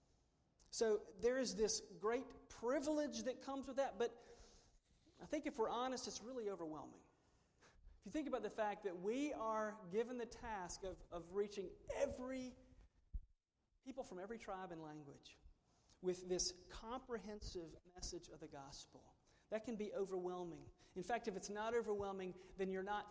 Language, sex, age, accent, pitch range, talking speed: English, male, 40-59, American, 195-240 Hz, 160 wpm